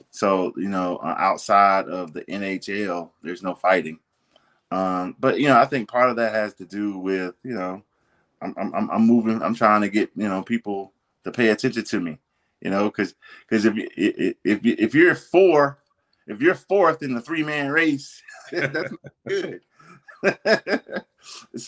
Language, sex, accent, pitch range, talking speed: English, male, American, 105-140 Hz, 165 wpm